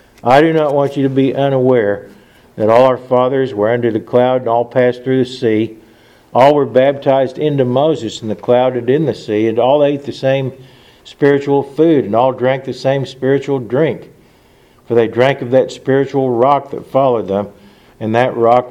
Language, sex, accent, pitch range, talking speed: English, male, American, 120-140 Hz, 200 wpm